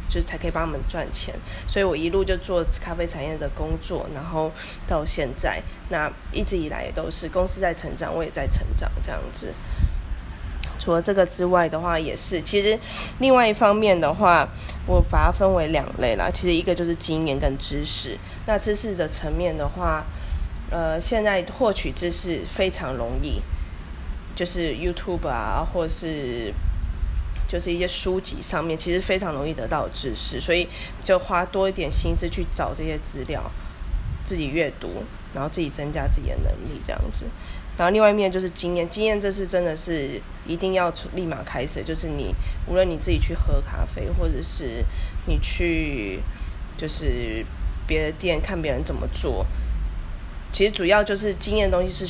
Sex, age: female, 20-39